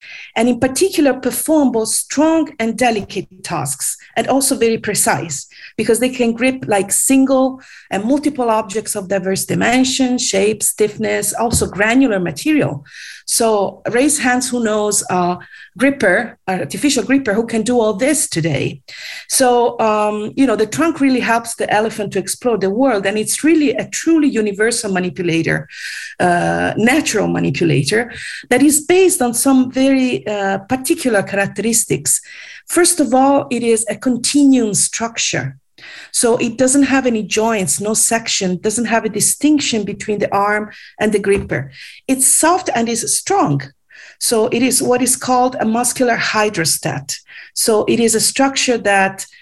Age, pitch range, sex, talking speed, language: 40-59, 200-260 Hz, female, 150 wpm, English